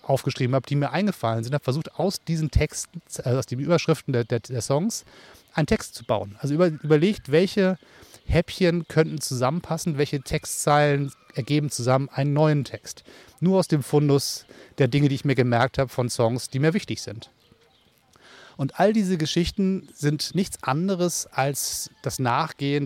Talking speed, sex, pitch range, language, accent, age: 170 wpm, male, 135-175 Hz, German, German, 30-49